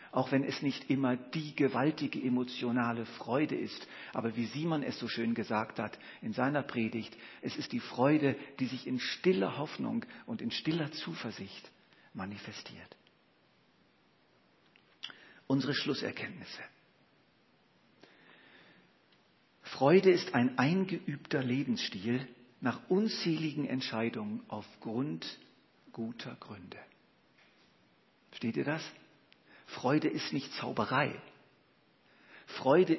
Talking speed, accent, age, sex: 100 wpm, German, 50-69, male